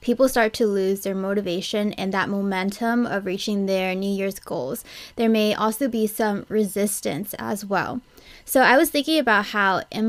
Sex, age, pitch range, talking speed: female, 20-39, 195-235 Hz, 180 wpm